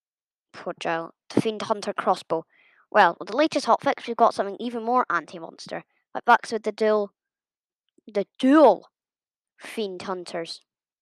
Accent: British